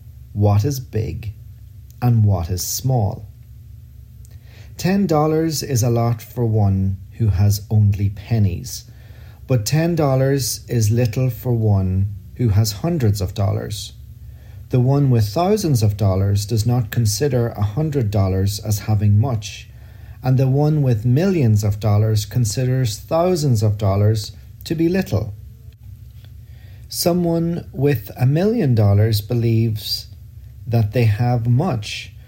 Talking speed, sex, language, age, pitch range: 130 wpm, male, English, 40-59, 105-125 Hz